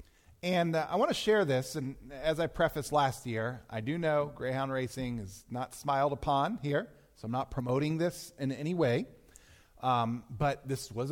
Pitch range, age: 145-205 Hz, 40-59